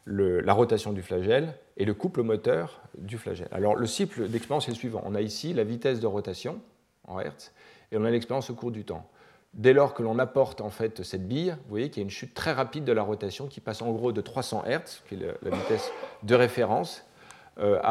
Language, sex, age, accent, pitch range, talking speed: French, male, 40-59, French, 105-135 Hz, 240 wpm